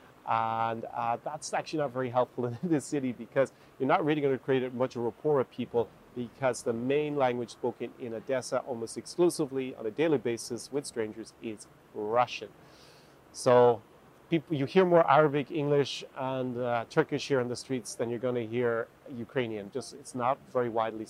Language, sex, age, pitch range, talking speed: English, male, 40-59, 115-135 Hz, 180 wpm